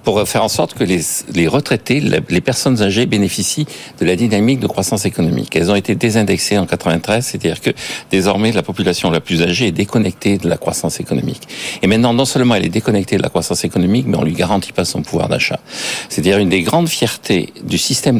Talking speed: 210 wpm